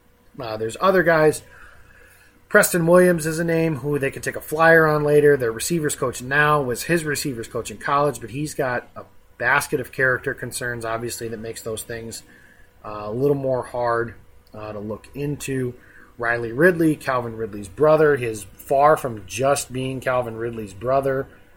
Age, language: 30-49, English